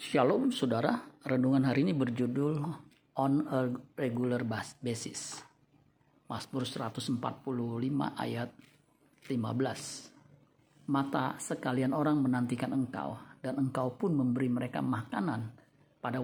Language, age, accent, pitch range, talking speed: Indonesian, 50-69, native, 125-145 Hz, 100 wpm